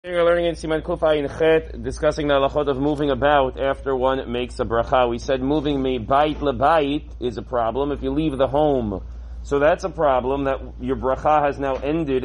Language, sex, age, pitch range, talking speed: English, male, 40-59, 135-175 Hz, 205 wpm